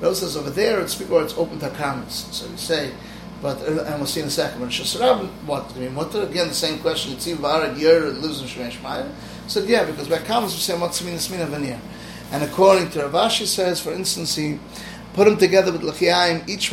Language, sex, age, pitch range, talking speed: English, male, 30-49, 150-200 Hz, 210 wpm